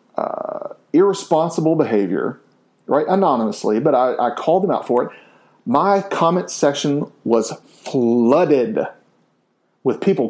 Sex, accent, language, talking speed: male, American, English, 115 wpm